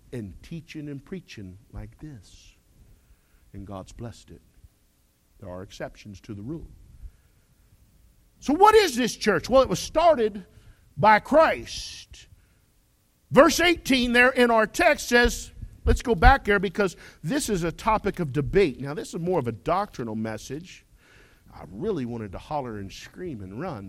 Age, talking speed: 50-69, 155 wpm